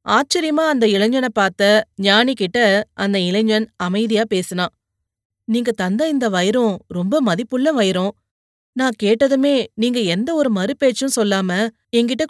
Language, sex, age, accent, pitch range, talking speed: Tamil, female, 30-49, native, 190-230 Hz, 115 wpm